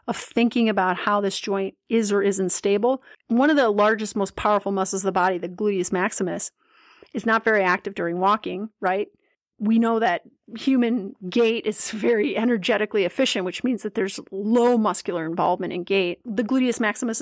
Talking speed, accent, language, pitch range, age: 180 wpm, American, English, 200-250 Hz, 30-49